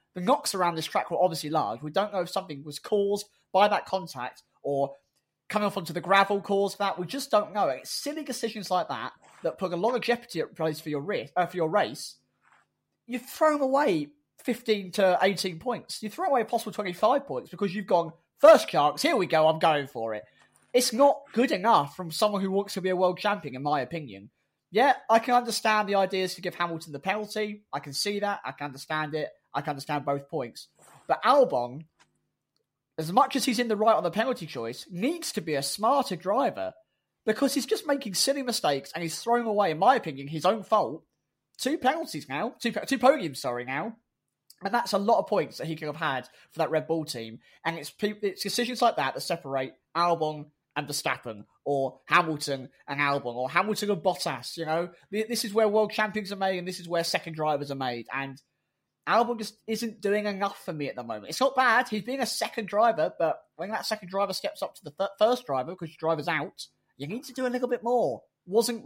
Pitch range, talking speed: 150-220 Hz, 220 wpm